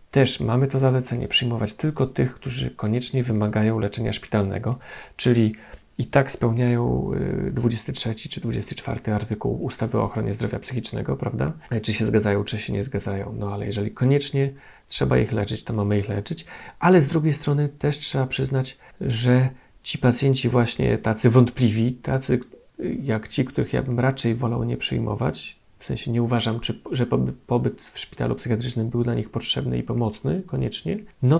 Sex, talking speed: male, 160 wpm